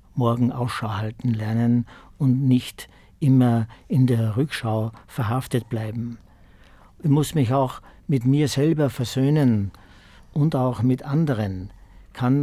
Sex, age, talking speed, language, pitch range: male, 50-69, 120 wpm, German, 110-135 Hz